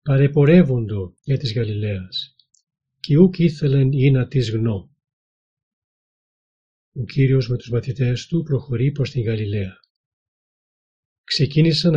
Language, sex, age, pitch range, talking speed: Greek, male, 40-59, 110-140 Hz, 110 wpm